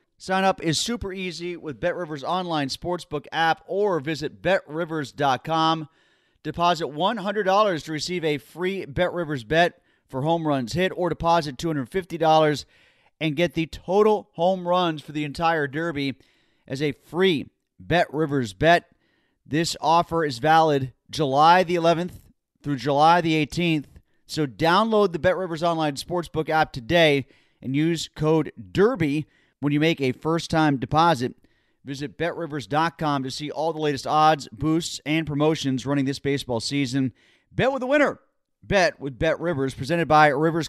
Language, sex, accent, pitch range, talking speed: English, male, American, 140-170 Hz, 145 wpm